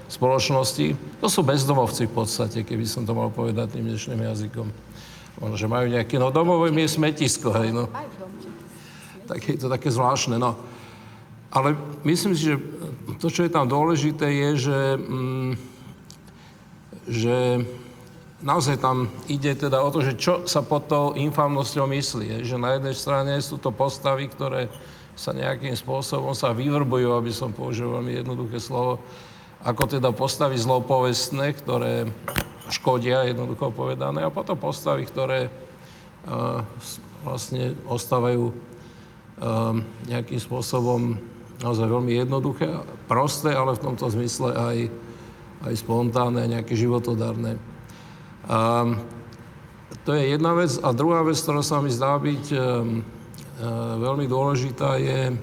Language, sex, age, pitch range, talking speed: Slovak, male, 50-69, 120-145 Hz, 135 wpm